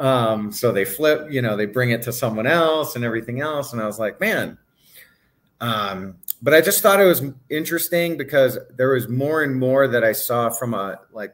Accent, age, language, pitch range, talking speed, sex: American, 30-49, English, 115-150 Hz, 210 wpm, male